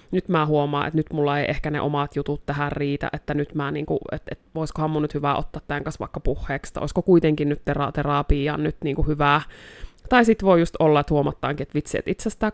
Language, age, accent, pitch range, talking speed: Finnish, 20-39, native, 145-160 Hz, 225 wpm